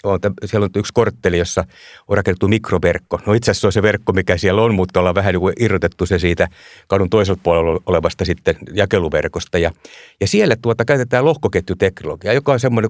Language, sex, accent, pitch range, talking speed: Finnish, male, native, 100-135 Hz, 185 wpm